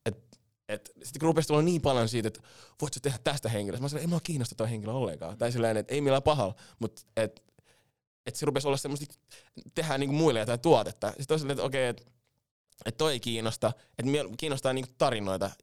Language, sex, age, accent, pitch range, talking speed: Finnish, male, 20-39, native, 110-140 Hz, 225 wpm